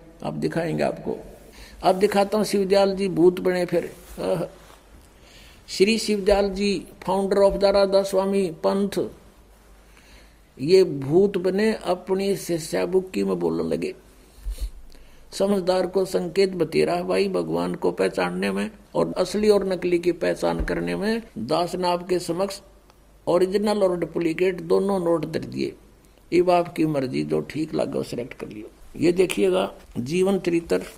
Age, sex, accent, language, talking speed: 60-79, male, native, Hindi, 130 wpm